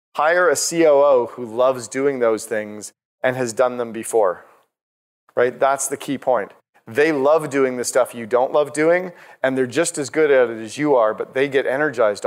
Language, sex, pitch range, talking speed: English, male, 130-170 Hz, 200 wpm